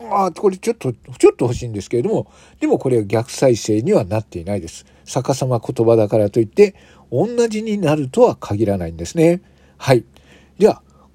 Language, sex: Japanese, male